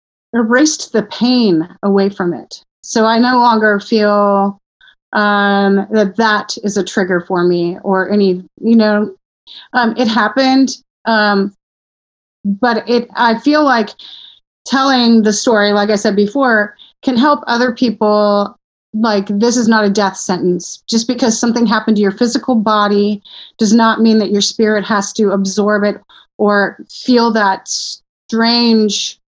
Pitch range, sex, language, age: 200-240 Hz, female, English, 30-49